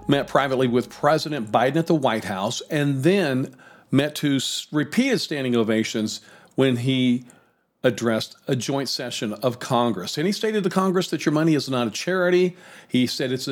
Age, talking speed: 50-69, 175 wpm